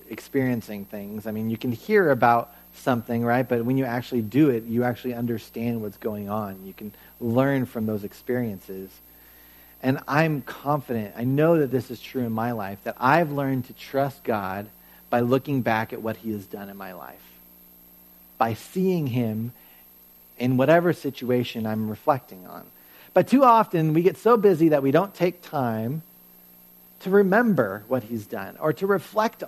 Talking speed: 175 wpm